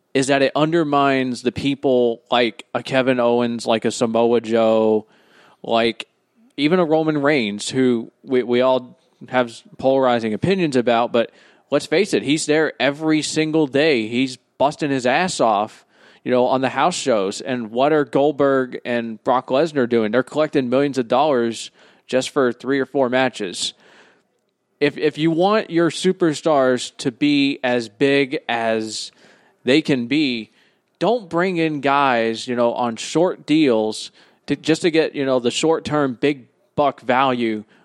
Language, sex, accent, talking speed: English, male, American, 160 wpm